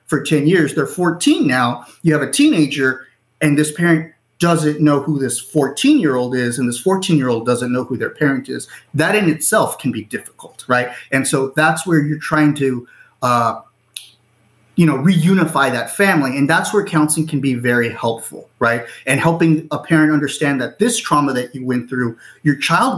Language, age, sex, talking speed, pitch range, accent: English, 30-49, male, 195 wpm, 130-165 Hz, American